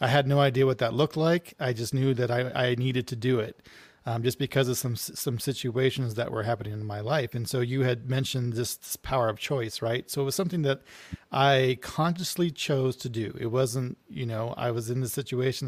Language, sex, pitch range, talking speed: English, male, 120-140 Hz, 235 wpm